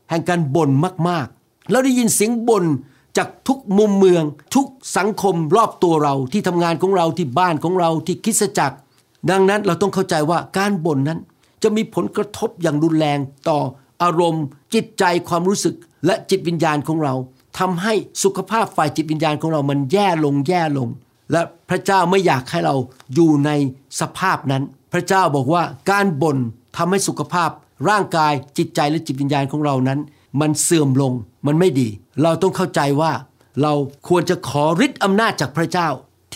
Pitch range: 150-195 Hz